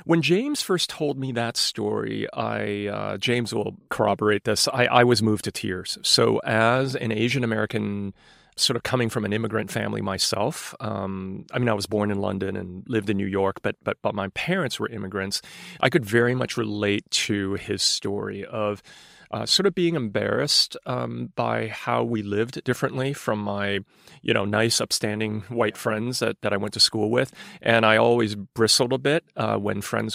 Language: English